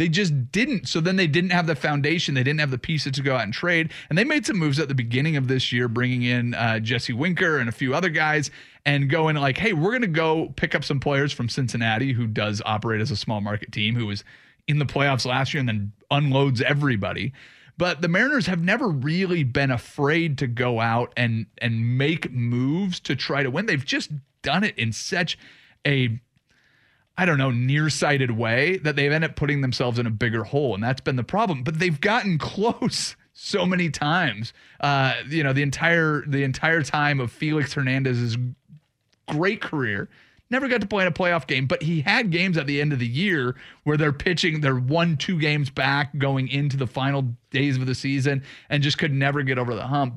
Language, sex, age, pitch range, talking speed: English, male, 30-49, 125-165 Hz, 220 wpm